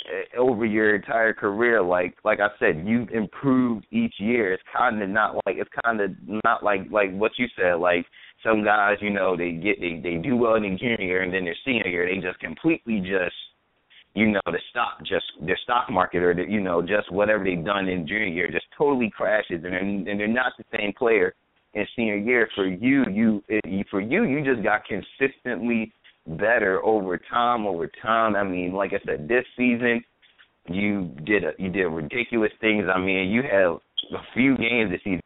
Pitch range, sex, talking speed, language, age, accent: 95-125 Hz, male, 205 wpm, English, 20-39, American